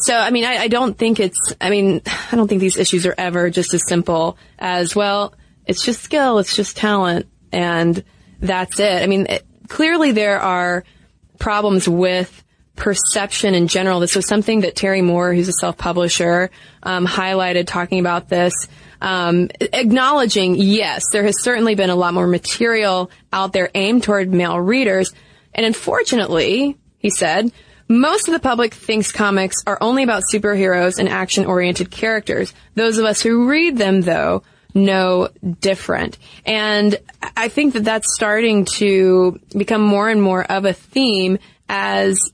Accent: American